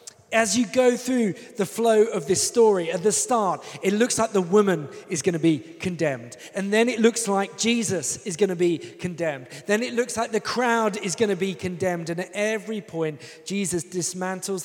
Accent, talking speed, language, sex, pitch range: British, 205 wpm, English, male, 160-210 Hz